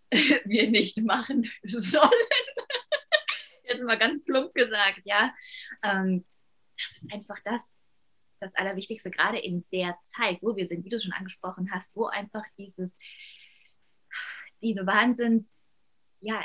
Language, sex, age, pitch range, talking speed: German, female, 20-39, 185-225 Hz, 125 wpm